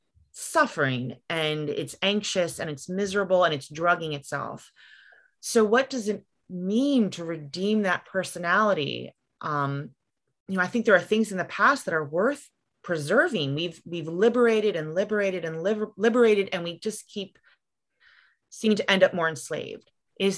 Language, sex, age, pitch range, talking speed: English, female, 30-49, 160-210 Hz, 155 wpm